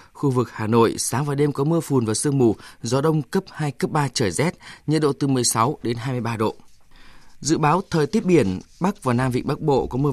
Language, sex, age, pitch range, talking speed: Vietnamese, male, 20-39, 120-160 Hz, 245 wpm